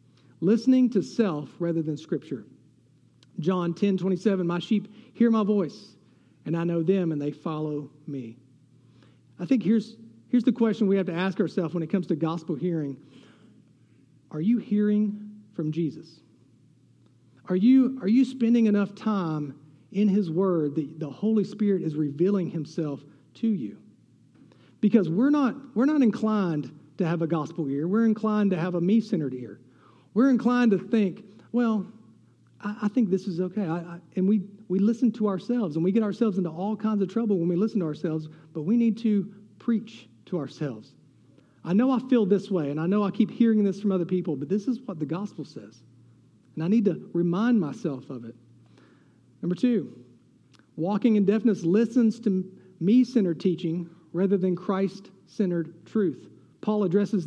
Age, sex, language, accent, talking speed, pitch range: 40-59, male, English, American, 175 wpm, 155-215 Hz